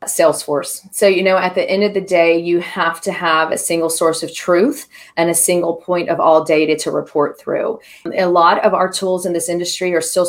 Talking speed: 230 wpm